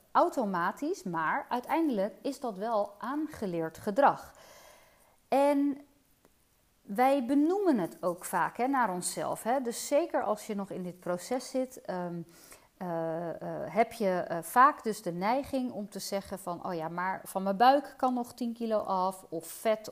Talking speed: 165 wpm